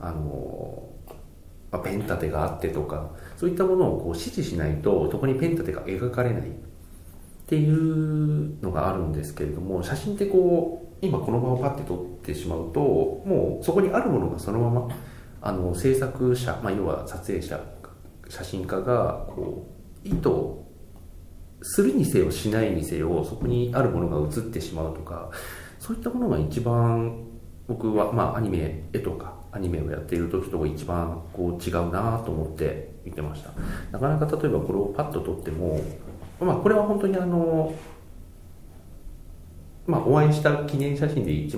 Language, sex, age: Japanese, male, 40-59